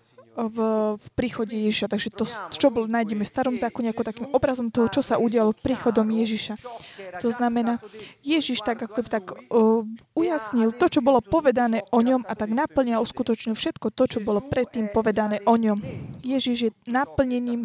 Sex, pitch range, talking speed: female, 220-255 Hz, 170 wpm